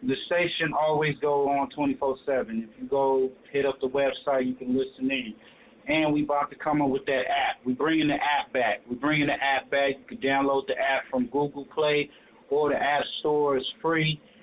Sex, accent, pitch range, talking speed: male, American, 130-155 Hz, 210 wpm